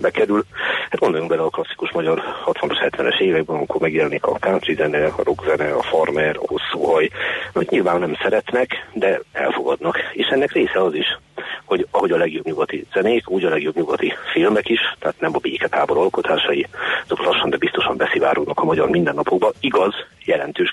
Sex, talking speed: male, 175 wpm